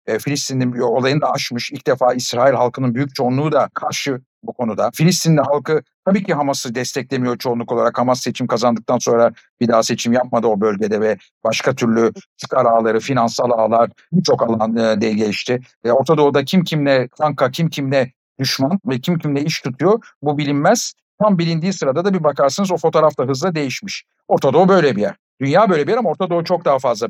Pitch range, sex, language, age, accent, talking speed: 120-145 Hz, male, Turkish, 50-69, native, 190 wpm